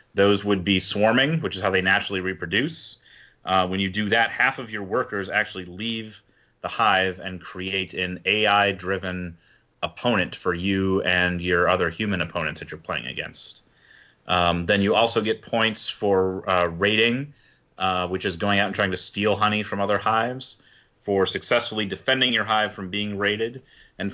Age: 30-49